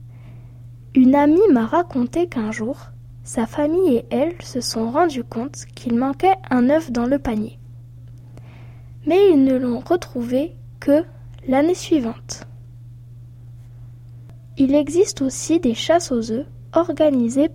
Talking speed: 125 wpm